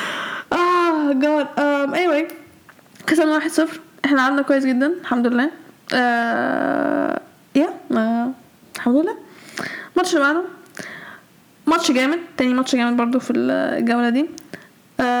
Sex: female